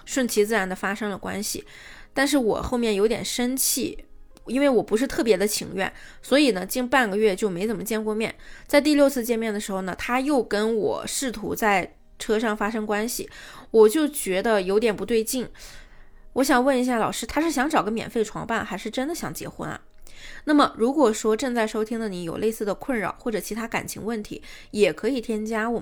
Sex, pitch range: female, 205-245 Hz